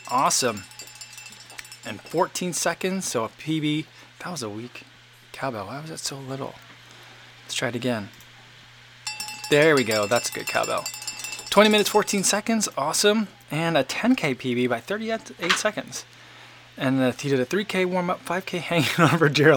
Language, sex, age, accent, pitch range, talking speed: English, male, 20-39, American, 125-170 Hz, 160 wpm